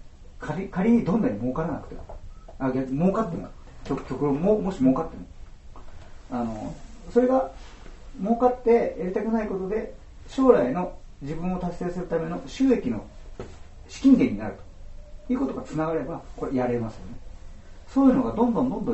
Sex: male